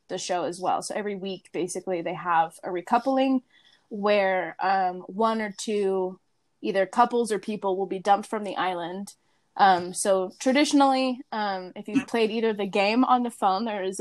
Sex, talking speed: female, 180 wpm